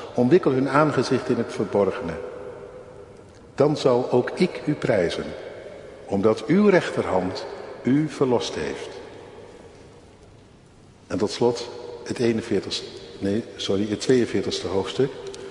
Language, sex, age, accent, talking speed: Dutch, male, 50-69, Dutch, 100 wpm